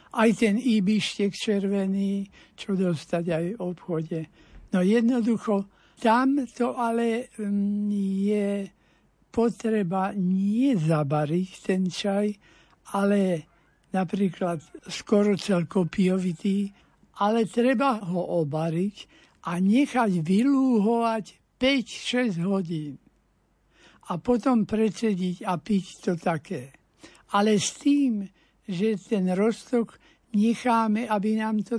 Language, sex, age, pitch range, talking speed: Slovak, male, 60-79, 185-220 Hz, 95 wpm